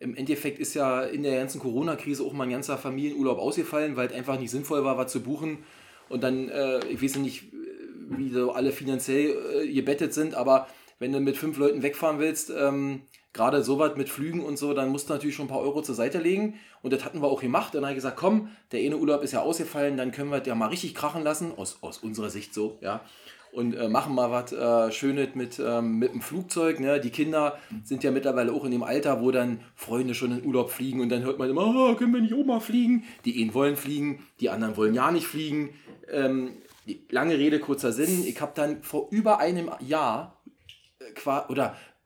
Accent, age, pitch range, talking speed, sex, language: German, 20-39, 130-155 Hz, 215 wpm, male, German